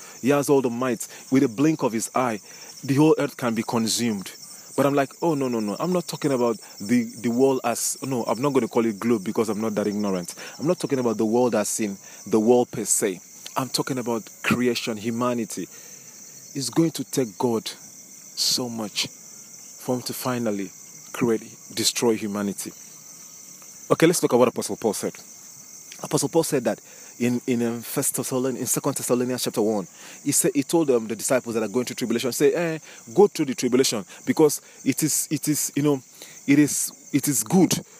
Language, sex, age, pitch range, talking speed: English, male, 30-49, 115-145 Hz, 200 wpm